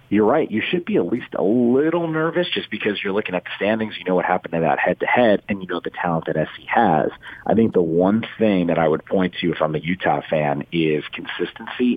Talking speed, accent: 245 wpm, American